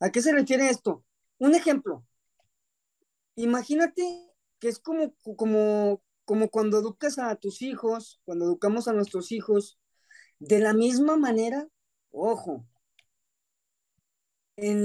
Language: Spanish